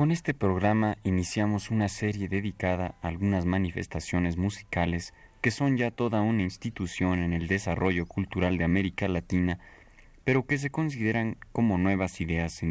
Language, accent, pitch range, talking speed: Spanish, Mexican, 90-115 Hz, 150 wpm